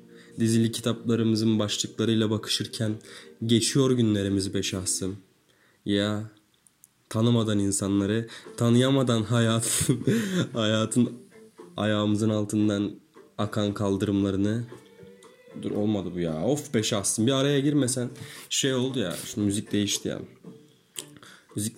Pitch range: 105-140 Hz